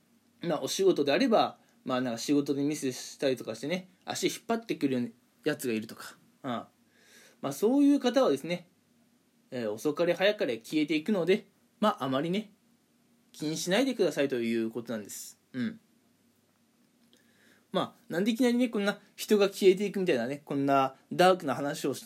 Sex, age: male, 20-39